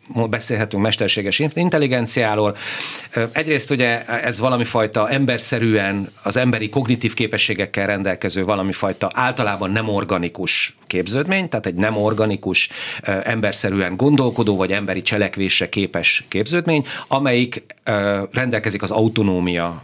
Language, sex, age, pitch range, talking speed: Hungarian, male, 40-59, 95-120 Hz, 100 wpm